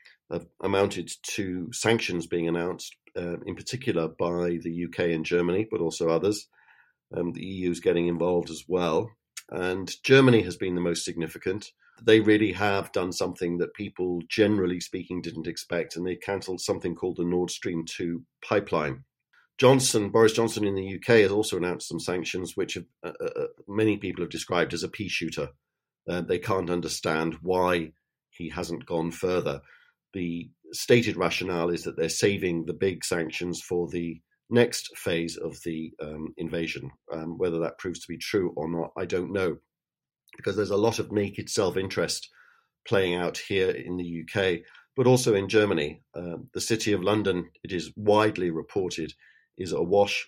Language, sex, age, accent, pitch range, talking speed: English, male, 50-69, British, 85-100 Hz, 170 wpm